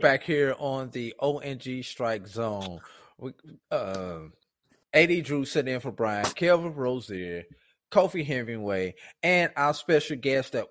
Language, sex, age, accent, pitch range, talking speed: English, male, 30-49, American, 100-130 Hz, 130 wpm